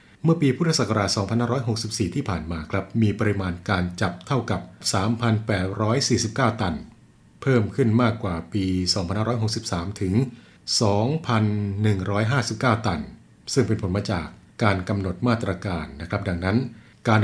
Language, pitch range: Thai, 95-115 Hz